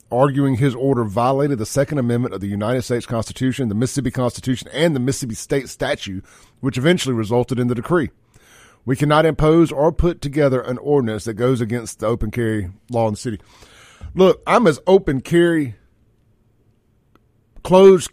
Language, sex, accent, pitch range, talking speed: English, male, American, 115-185 Hz, 165 wpm